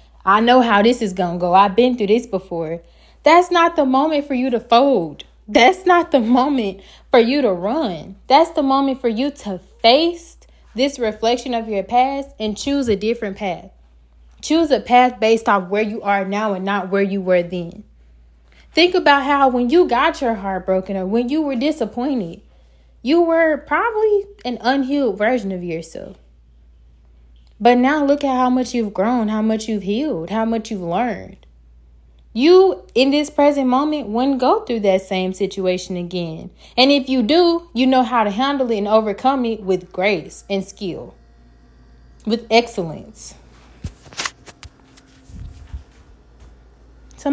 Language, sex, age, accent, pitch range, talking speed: English, female, 20-39, American, 180-265 Hz, 165 wpm